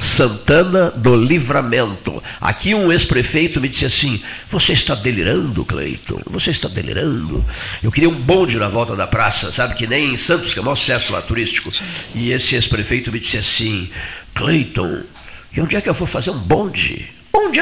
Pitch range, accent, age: 110-155 Hz, Brazilian, 50-69